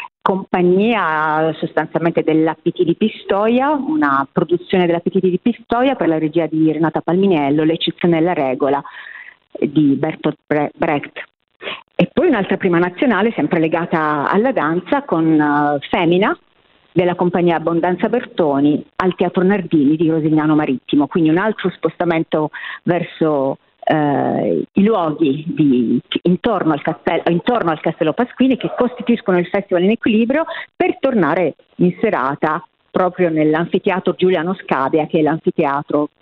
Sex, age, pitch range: female, 40-59, 155-185 Hz